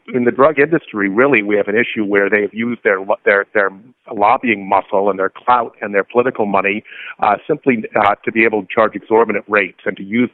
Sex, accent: male, American